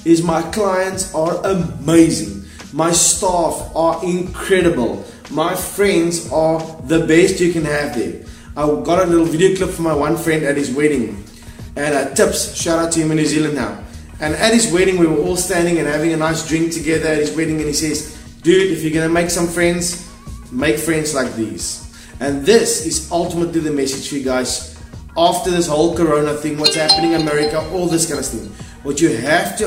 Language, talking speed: English, 200 wpm